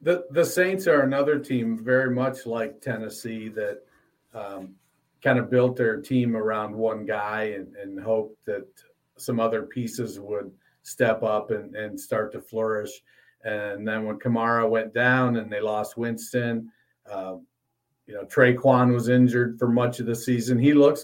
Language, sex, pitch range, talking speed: English, male, 115-145 Hz, 165 wpm